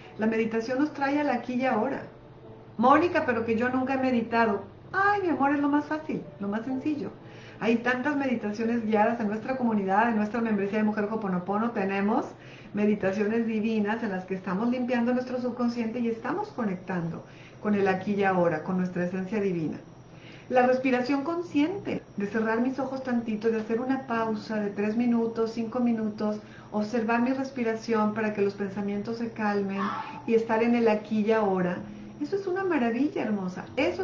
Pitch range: 200-255 Hz